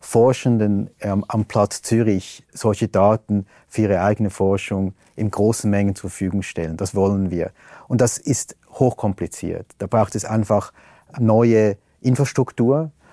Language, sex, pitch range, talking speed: German, male, 100-125 Hz, 135 wpm